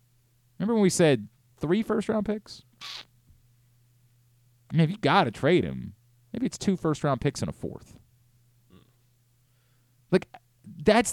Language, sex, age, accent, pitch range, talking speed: English, male, 30-49, American, 120-180 Hz, 120 wpm